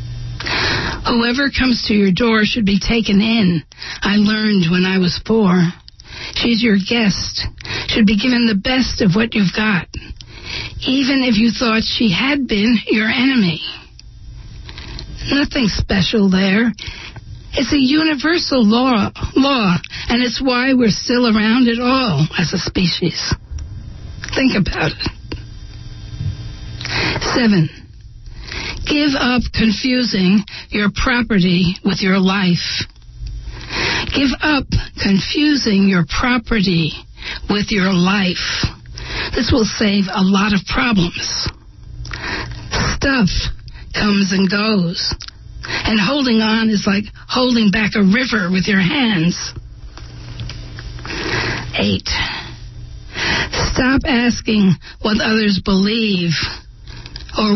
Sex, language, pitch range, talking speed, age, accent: female, English, 175-235 Hz, 110 wpm, 60-79, American